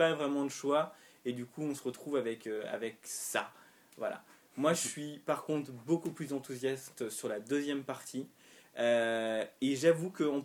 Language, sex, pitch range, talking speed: French, male, 125-160 Hz, 170 wpm